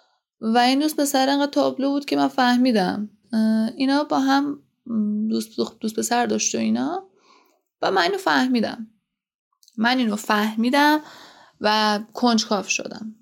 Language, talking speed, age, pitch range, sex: Persian, 130 wpm, 20-39, 200-255 Hz, female